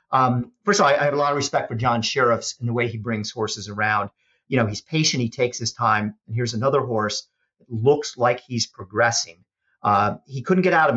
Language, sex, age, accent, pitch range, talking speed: English, male, 50-69, American, 115-145 Hz, 235 wpm